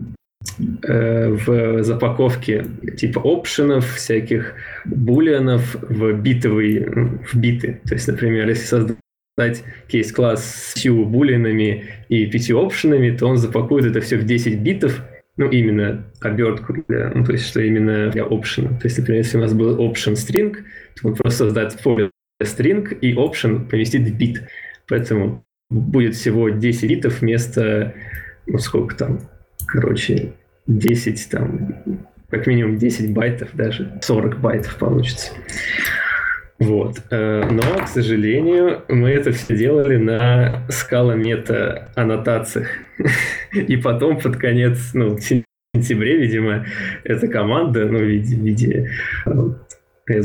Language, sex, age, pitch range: Russian, male, 20-39, 110-125 Hz